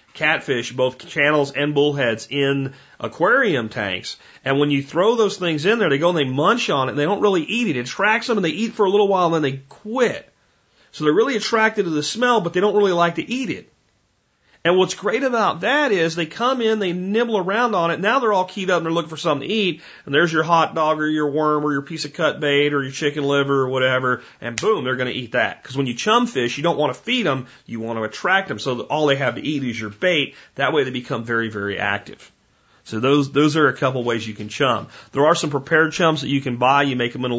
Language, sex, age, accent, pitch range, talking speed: English, male, 40-59, American, 125-160 Hz, 270 wpm